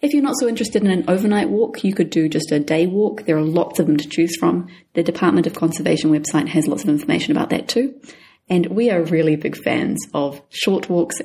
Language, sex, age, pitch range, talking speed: English, female, 30-49, 160-200 Hz, 240 wpm